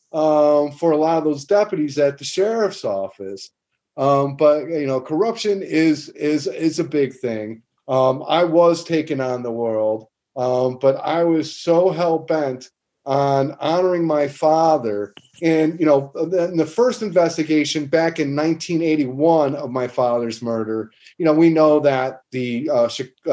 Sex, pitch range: male, 130-165 Hz